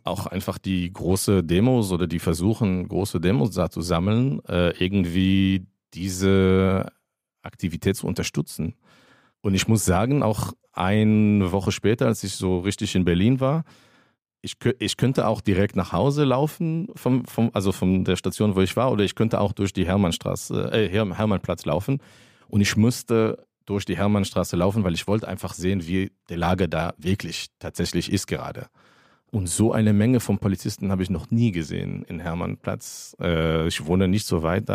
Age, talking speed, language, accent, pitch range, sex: 40-59, 175 wpm, German, German, 90-110 Hz, male